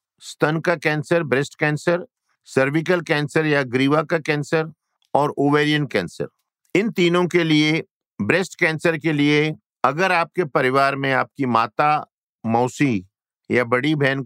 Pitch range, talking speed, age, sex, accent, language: 125-155 Hz, 135 wpm, 50-69, male, native, Hindi